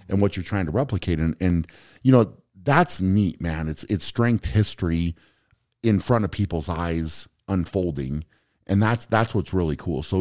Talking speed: 175 wpm